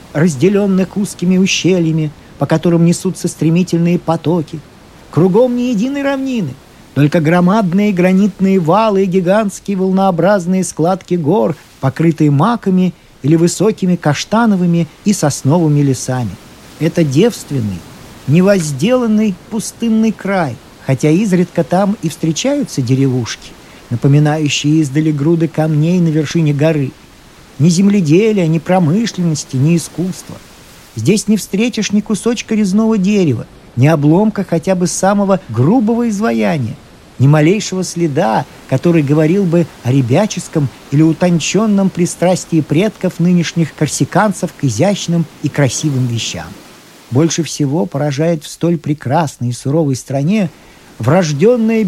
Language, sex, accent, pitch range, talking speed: Russian, male, native, 150-195 Hz, 110 wpm